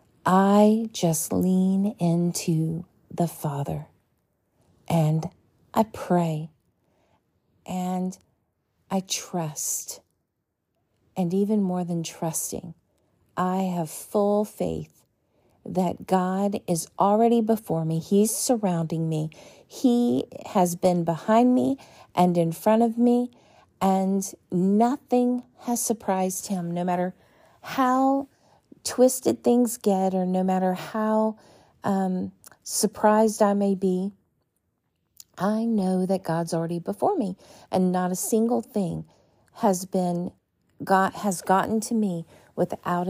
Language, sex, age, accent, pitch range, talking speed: English, female, 40-59, American, 170-210 Hz, 110 wpm